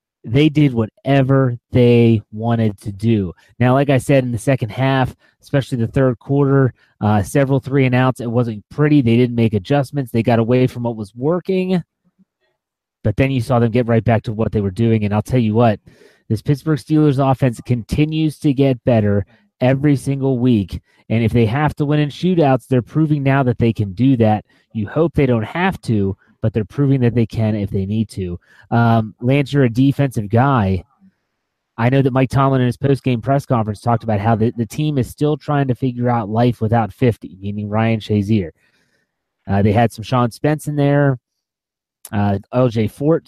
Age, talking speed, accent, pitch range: 30-49, 195 wpm, American, 115-140 Hz